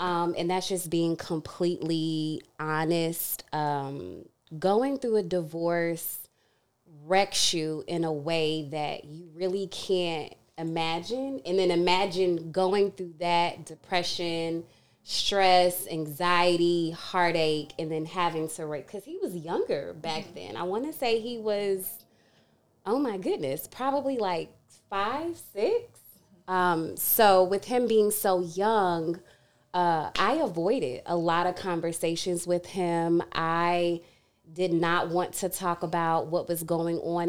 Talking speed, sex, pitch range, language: 135 wpm, female, 165-190 Hz, English